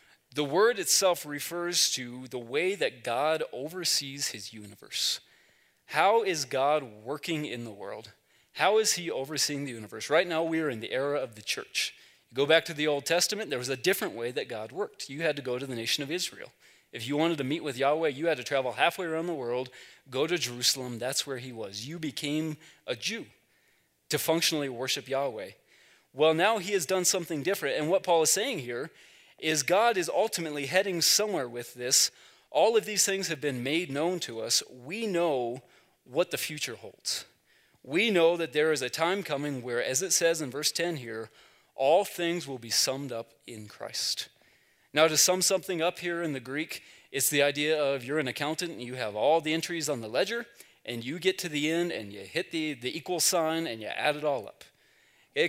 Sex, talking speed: male, 210 wpm